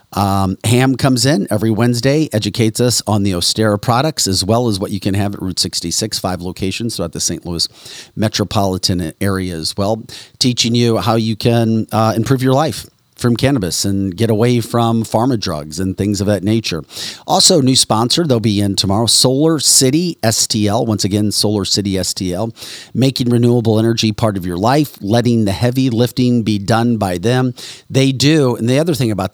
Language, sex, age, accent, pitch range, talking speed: English, male, 40-59, American, 100-120 Hz, 185 wpm